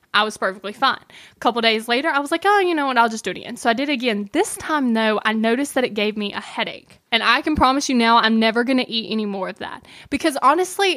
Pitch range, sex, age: 220-290 Hz, female, 10-29